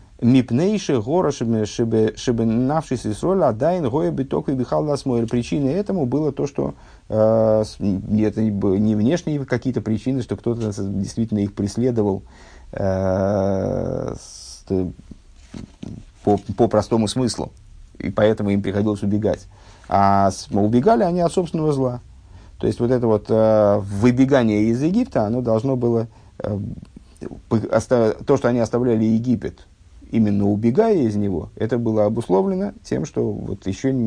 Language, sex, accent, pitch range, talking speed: Russian, male, native, 100-130 Hz, 130 wpm